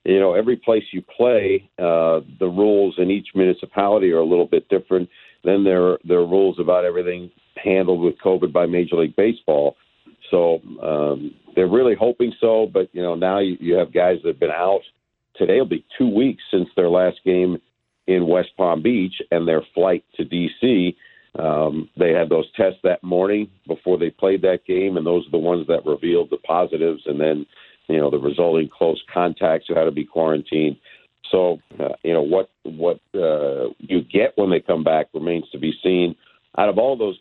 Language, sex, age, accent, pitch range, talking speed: English, male, 50-69, American, 80-100 Hz, 200 wpm